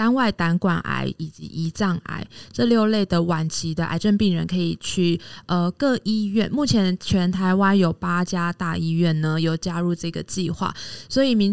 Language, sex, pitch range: Chinese, female, 170-205 Hz